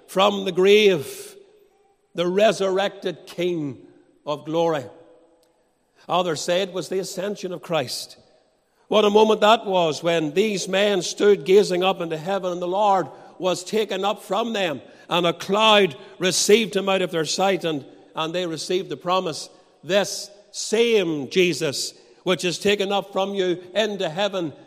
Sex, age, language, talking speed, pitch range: male, 60-79, English, 150 wpm, 165-200 Hz